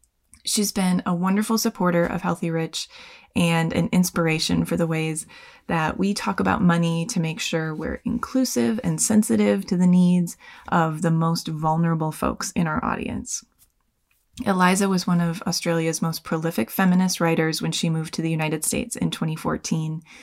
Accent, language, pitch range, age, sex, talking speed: American, English, 165-195 Hz, 20-39, female, 165 wpm